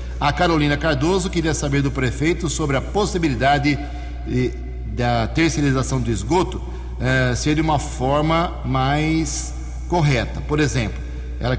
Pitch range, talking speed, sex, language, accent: 120-155 Hz, 125 wpm, male, English, Brazilian